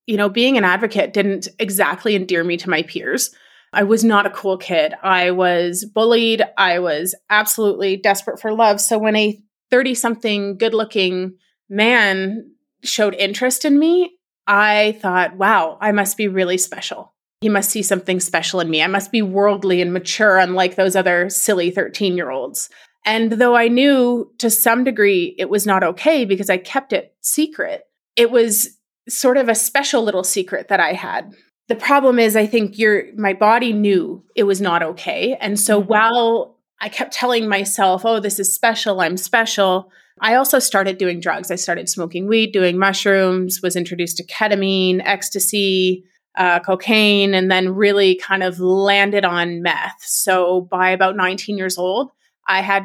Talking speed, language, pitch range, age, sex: 175 wpm, English, 185-225 Hz, 30-49, female